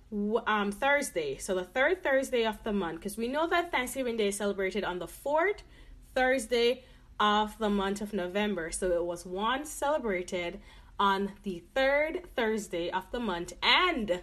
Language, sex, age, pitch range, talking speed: English, female, 20-39, 210-310 Hz, 165 wpm